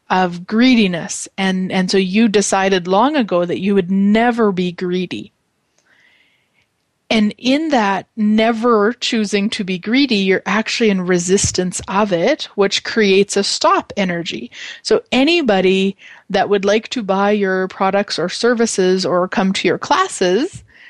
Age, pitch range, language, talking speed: 30-49, 190-235 Hz, English, 145 wpm